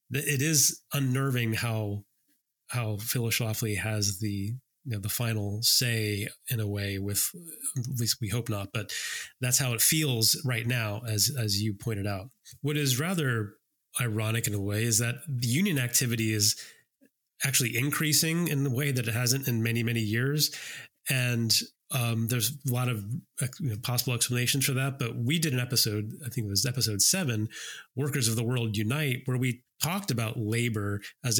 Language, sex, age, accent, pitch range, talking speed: English, male, 30-49, American, 110-135 Hz, 180 wpm